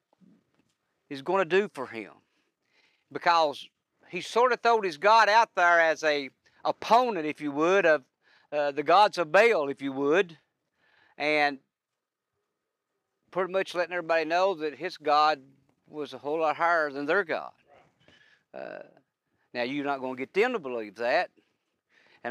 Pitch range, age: 140-195 Hz, 50-69